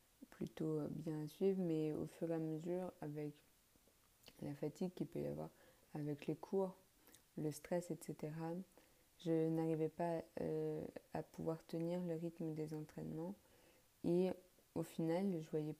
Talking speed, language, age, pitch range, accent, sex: 150 wpm, French, 20-39, 155-180 Hz, French, female